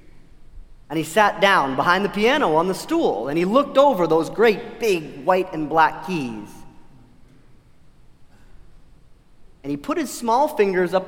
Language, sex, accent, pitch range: English, male, American, 160-230 Hz